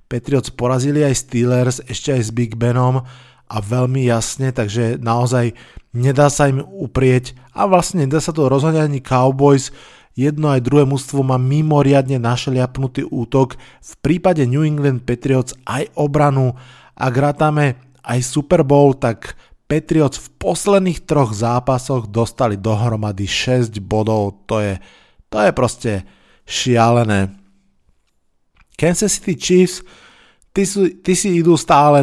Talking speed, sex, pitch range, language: 125 wpm, male, 120-150 Hz, Slovak